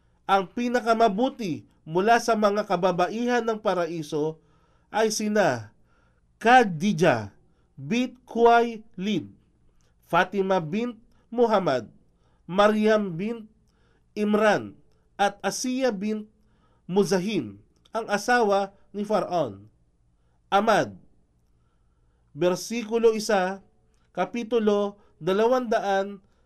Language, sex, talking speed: Filipino, male, 75 wpm